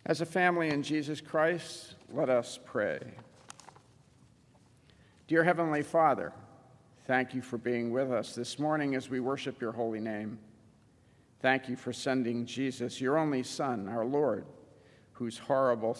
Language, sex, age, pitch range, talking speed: English, male, 50-69, 120-145 Hz, 145 wpm